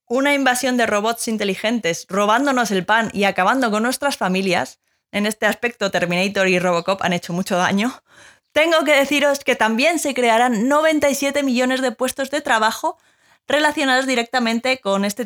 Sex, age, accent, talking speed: female, 20-39, Spanish, 155 wpm